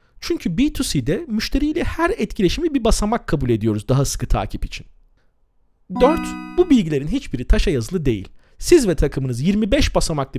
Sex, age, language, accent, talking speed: male, 40-59, Turkish, native, 145 wpm